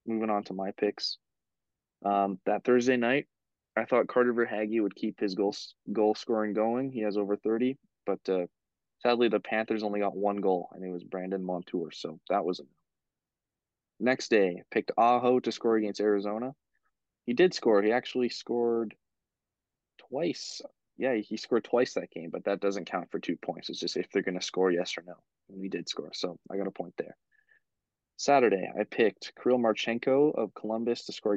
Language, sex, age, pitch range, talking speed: English, male, 20-39, 95-115 Hz, 190 wpm